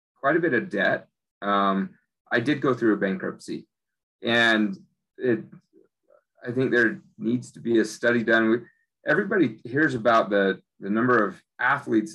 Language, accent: English, American